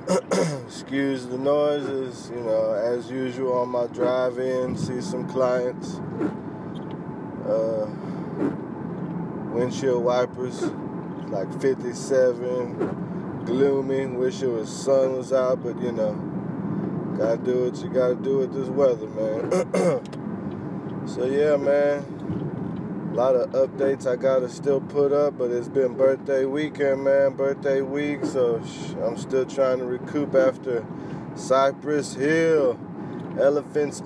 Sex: male